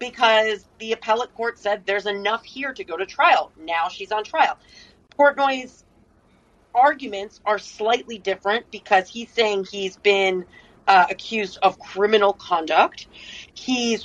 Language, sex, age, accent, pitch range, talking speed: English, female, 30-49, American, 195-255 Hz, 135 wpm